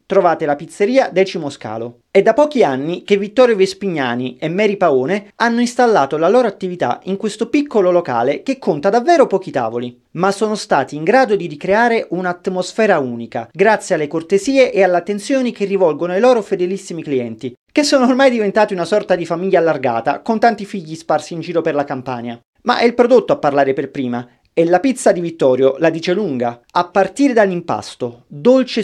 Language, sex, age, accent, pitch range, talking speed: Italian, male, 40-59, native, 155-215 Hz, 185 wpm